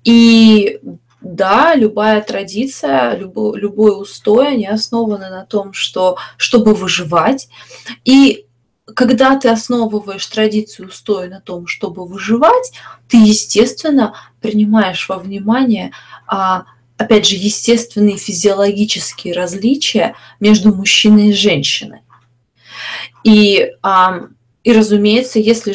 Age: 20-39